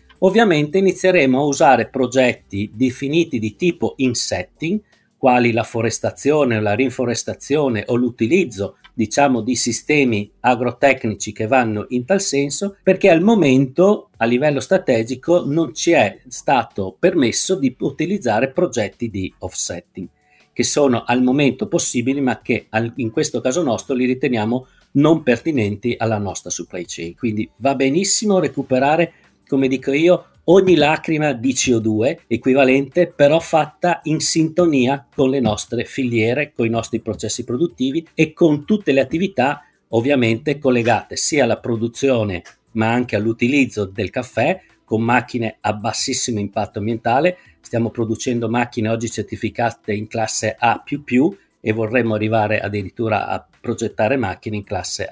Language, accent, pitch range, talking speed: Italian, native, 115-145 Hz, 135 wpm